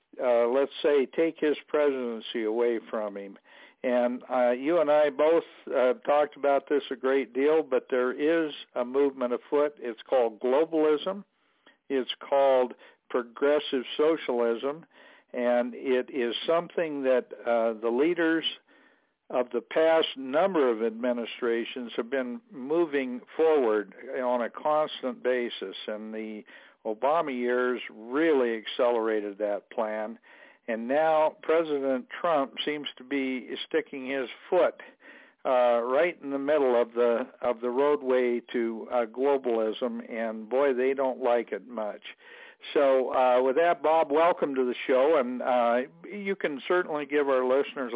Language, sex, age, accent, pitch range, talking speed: English, male, 60-79, American, 120-150 Hz, 140 wpm